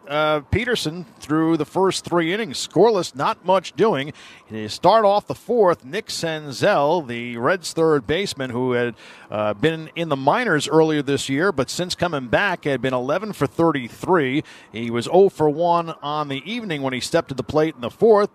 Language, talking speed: English, 190 wpm